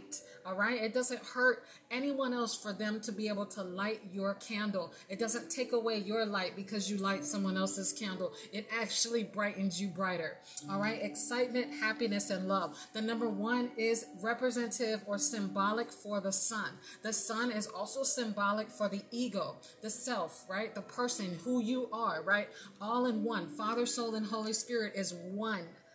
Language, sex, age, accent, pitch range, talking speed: English, female, 30-49, American, 200-235 Hz, 175 wpm